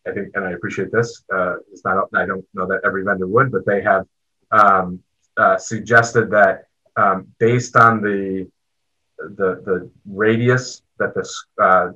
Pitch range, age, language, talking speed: 100-110 Hz, 30-49, English, 165 wpm